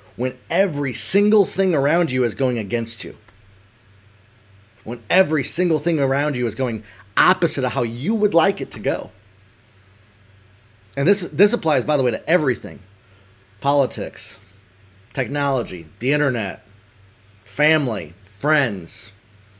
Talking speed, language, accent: 130 wpm, English, American